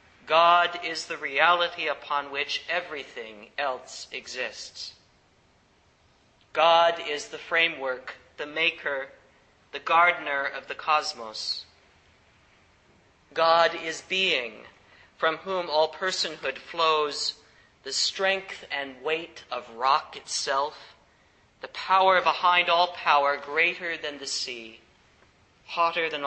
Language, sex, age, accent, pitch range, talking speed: English, male, 40-59, American, 135-170 Hz, 105 wpm